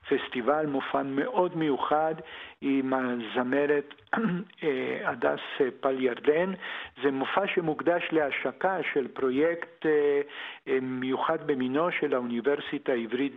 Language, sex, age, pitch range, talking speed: Hebrew, male, 50-69, 135-160 Hz, 90 wpm